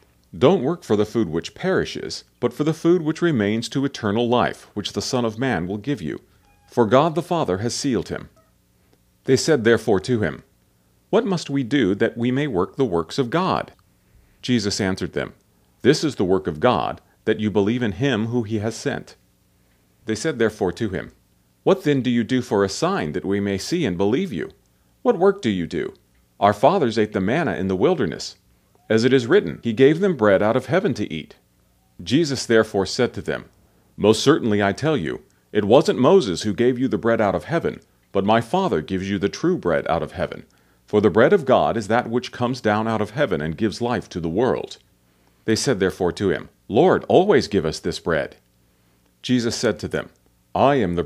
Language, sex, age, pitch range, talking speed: English, male, 40-59, 95-130 Hz, 215 wpm